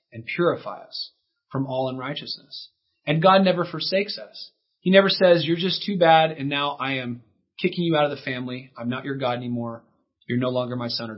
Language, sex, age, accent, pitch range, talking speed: English, male, 30-49, American, 135-175 Hz, 210 wpm